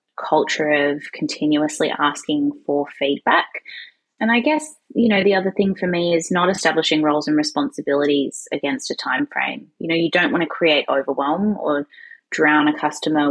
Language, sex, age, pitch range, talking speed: English, female, 20-39, 150-220 Hz, 170 wpm